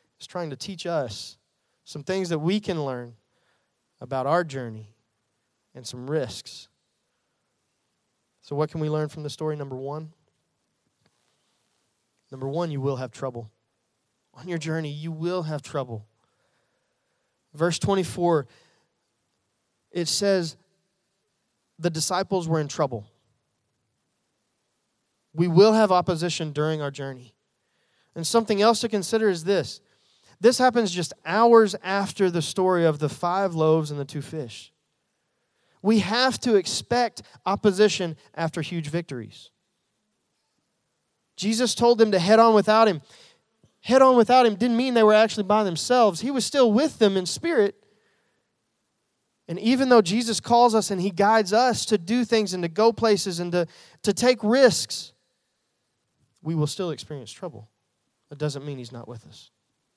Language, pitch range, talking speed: English, 145-210 Hz, 145 wpm